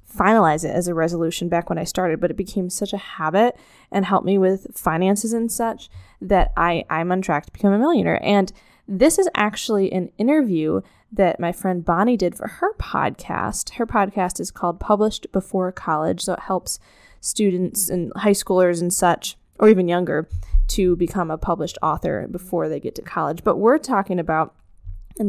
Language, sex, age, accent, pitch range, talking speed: English, female, 10-29, American, 175-215 Hz, 185 wpm